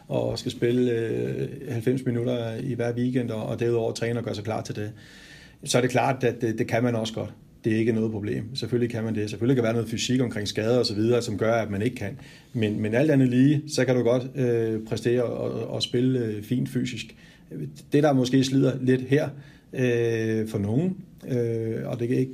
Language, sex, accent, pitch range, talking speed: Danish, male, native, 115-135 Hz, 230 wpm